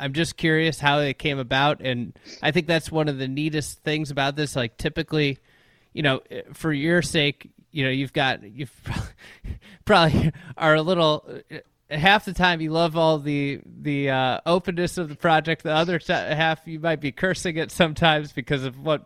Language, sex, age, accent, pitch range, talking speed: English, male, 20-39, American, 135-165 Hz, 200 wpm